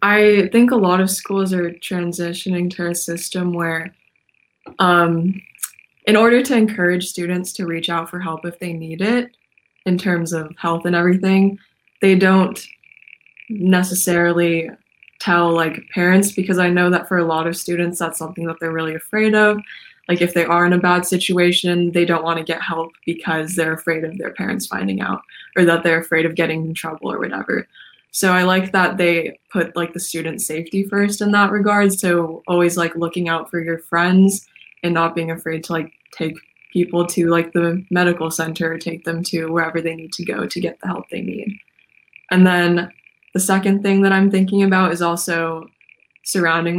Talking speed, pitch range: 190 wpm, 165-190 Hz